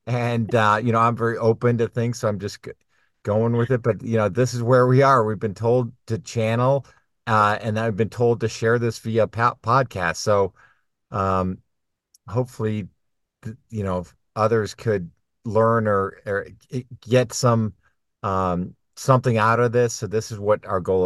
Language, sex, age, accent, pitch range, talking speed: English, male, 50-69, American, 105-125 Hz, 180 wpm